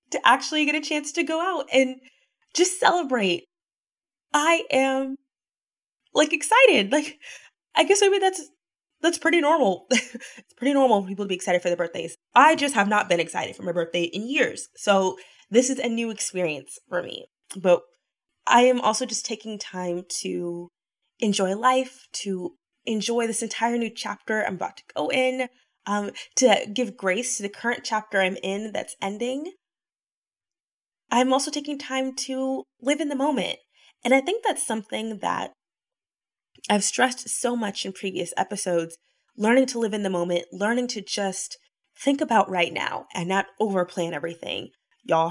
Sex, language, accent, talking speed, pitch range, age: female, English, American, 170 wpm, 195-280 Hz, 20-39